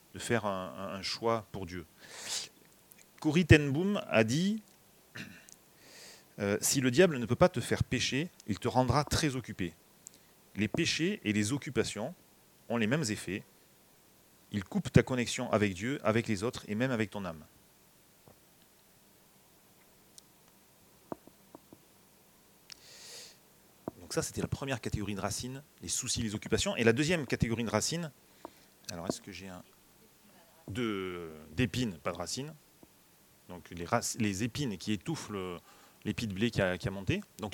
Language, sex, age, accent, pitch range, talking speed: French, male, 40-59, French, 105-145 Hz, 145 wpm